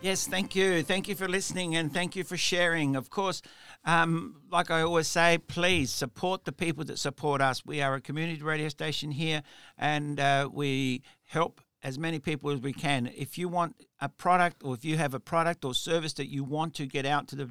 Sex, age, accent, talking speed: male, 60-79, Australian, 220 wpm